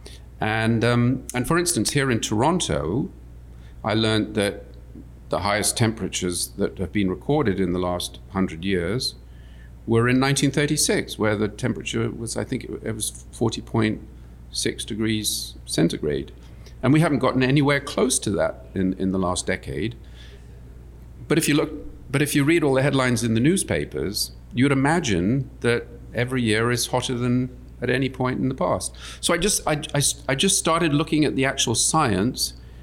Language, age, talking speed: English, 50-69, 170 wpm